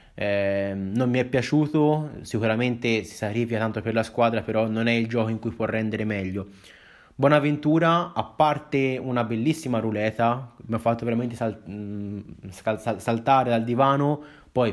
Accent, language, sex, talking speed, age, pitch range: native, Italian, male, 155 wpm, 20-39, 105-125 Hz